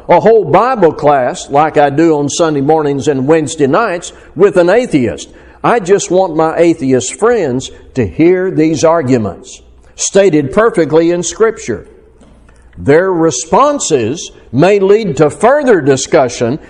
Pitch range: 130-170 Hz